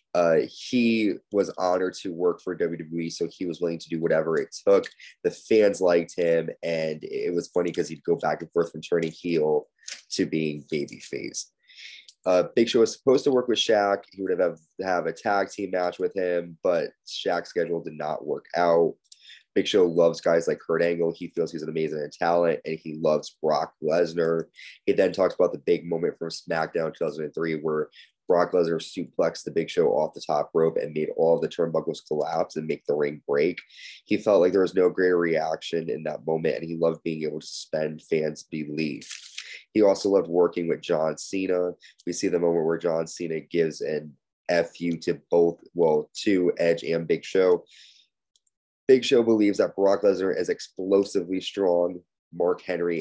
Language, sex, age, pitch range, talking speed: English, male, 20-39, 80-110 Hz, 190 wpm